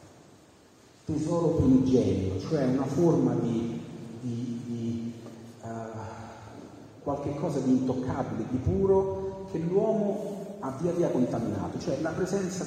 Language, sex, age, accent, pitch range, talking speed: Italian, male, 40-59, native, 120-150 Hz, 110 wpm